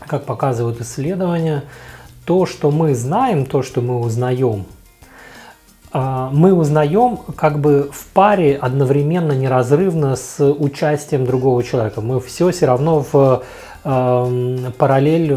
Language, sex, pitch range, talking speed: Russian, male, 125-155 Hz, 115 wpm